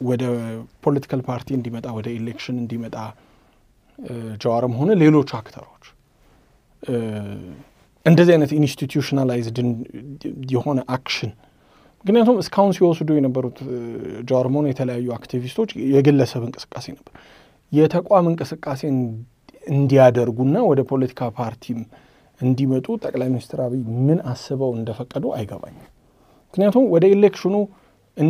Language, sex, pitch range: English, male, 125-160 Hz